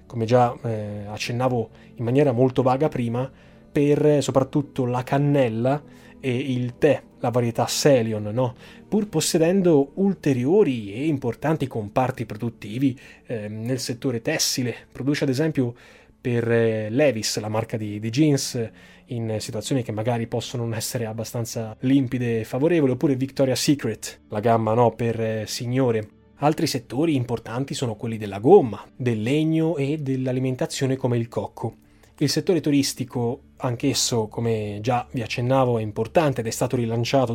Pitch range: 115-140 Hz